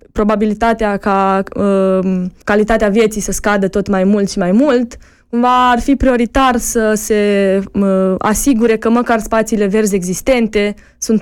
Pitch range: 190-230 Hz